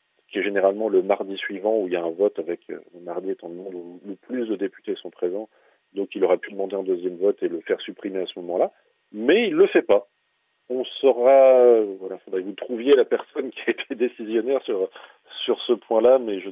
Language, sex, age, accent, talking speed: French, male, 40-59, French, 230 wpm